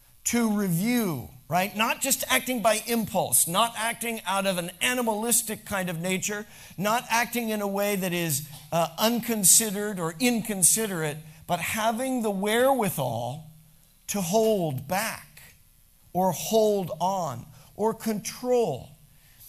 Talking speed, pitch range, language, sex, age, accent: 125 wpm, 155-215 Hz, English, male, 50-69, American